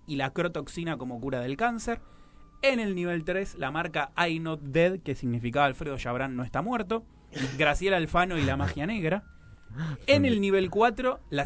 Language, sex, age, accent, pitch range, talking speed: Spanish, male, 20-39, Argentinian, 125-185 Hz, 180 wpm